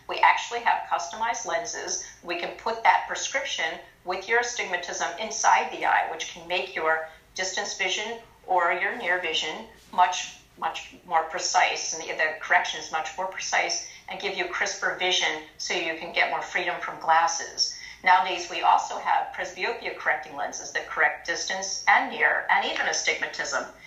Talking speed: 165 wpm